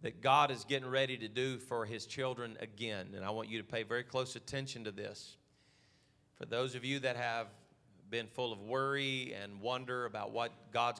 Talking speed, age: 200 wpm, 40-59